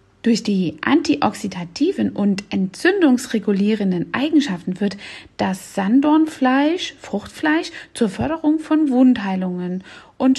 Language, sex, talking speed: German, female, 85 wpm